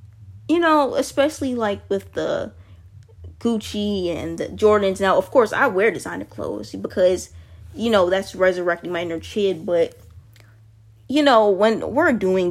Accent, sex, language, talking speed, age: American, female, English, 150 wpm, 20-39